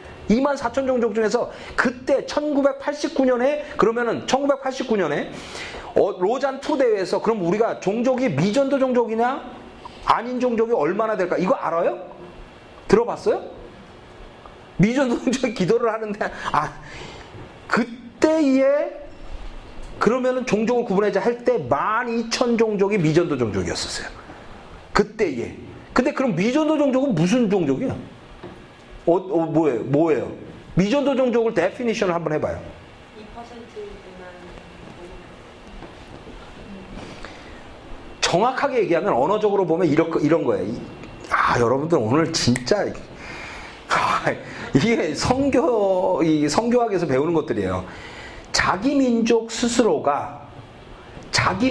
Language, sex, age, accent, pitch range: Korean, male, 40-59, native, 180-260 Hz